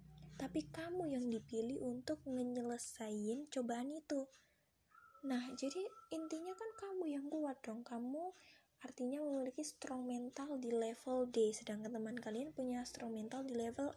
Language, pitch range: Indonesian, 225-270 Hz